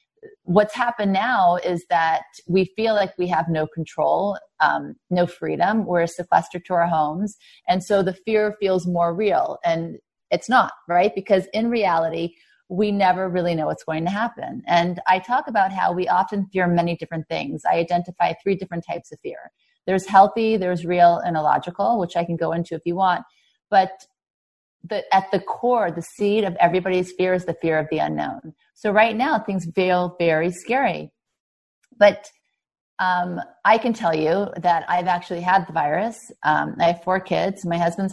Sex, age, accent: female, 30-49, American